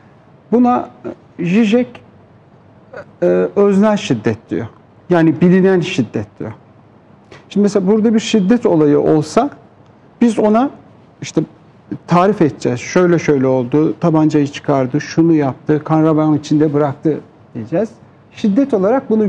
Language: Turkish